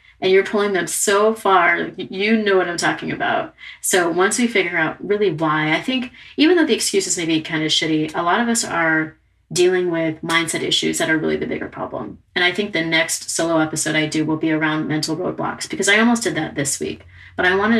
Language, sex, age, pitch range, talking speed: English, female, 30-49, 160-225 Hz, 235 wpm